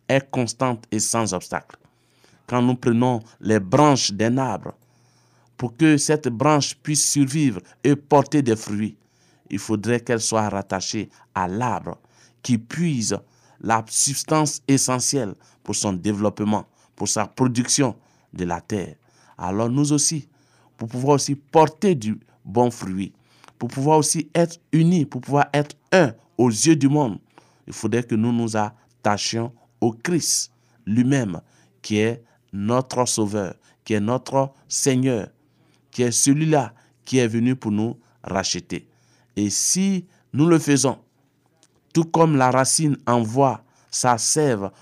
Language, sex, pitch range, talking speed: French, male, 110-140 Hz, 140 wpm